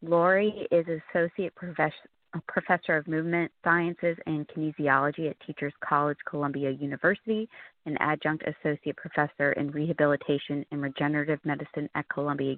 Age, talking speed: 30-49, 120 wpm